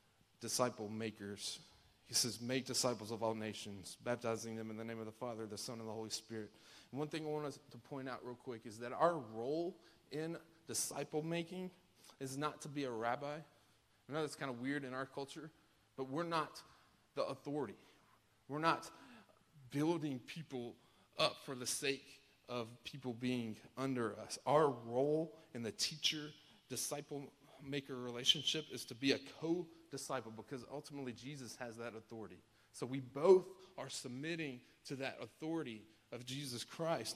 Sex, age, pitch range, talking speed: male, 30-49, 115-150 Hz, 170 wpm